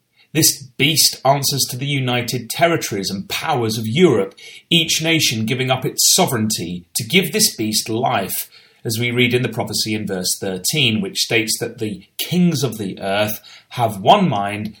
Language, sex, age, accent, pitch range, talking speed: English, male, 30-49, British, 110-140 Hz, 170 wpm